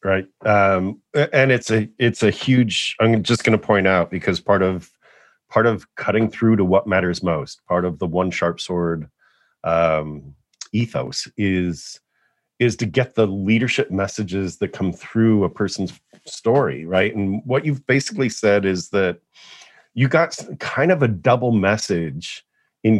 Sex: male